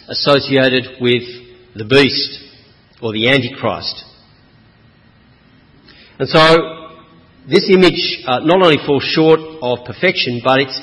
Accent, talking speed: Australian, 105 wpm